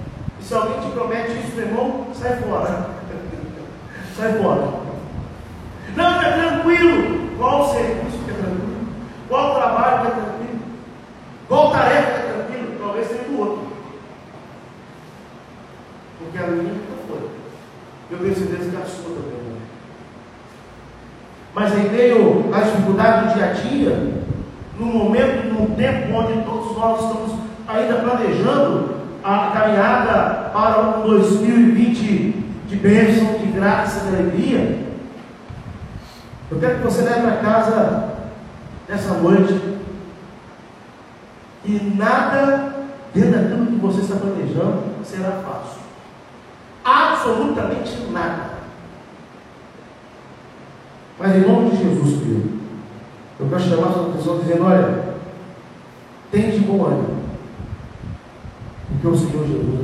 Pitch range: 180-230 Hz